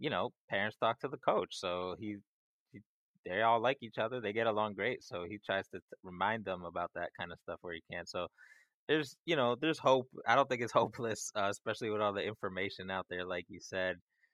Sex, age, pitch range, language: male, 20-39, 95-115 Hz, English